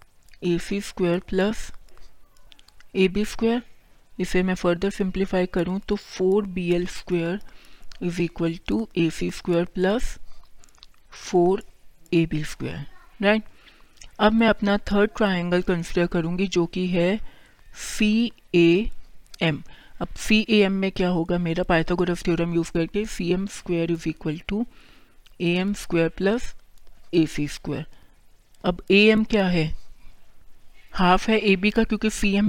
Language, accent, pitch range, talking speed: Hindi, native, 175-205 Hz, 130 wpm